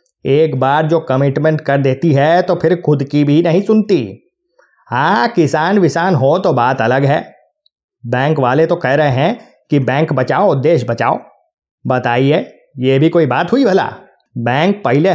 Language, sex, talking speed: Hindi, male, 165 wpm